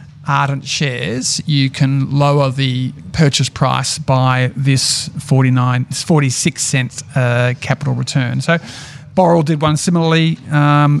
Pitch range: 140-155 Hz